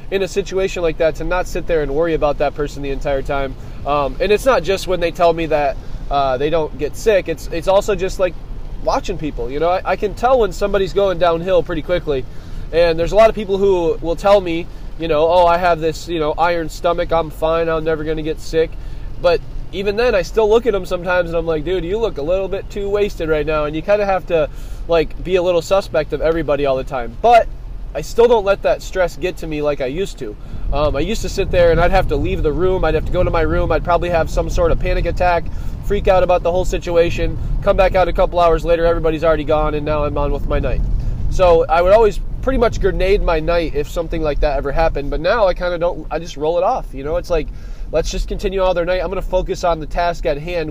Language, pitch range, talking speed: English, 150-185 Hz, 270 wpm